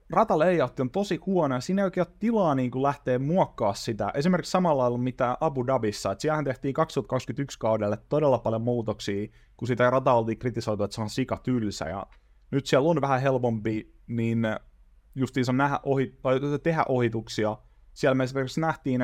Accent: native